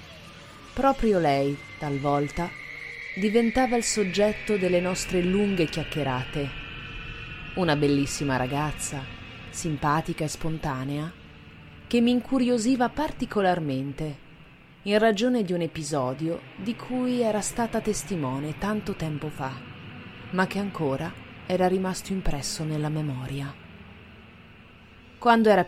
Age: 30-49